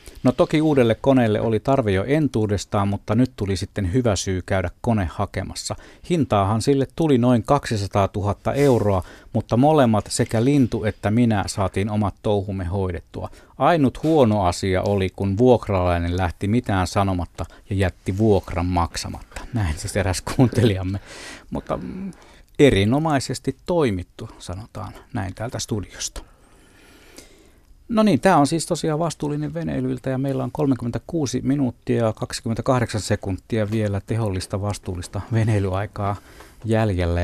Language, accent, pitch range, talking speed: Finnish, native, 95-125 Hz, 130 wpm